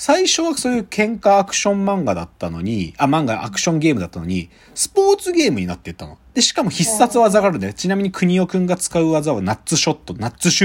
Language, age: Japanese, 40-59